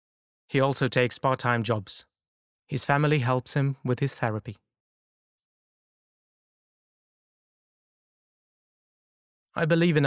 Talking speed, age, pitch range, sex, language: 90 wpm, 30-49, 120-145 Hz, male, English